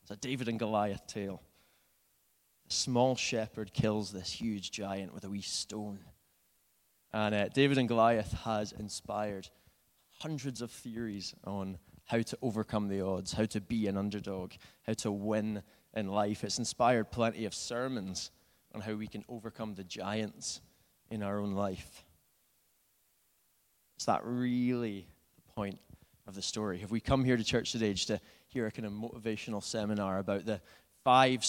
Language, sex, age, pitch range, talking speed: English, male, 20-39, 100-115 Hz, 160 wpm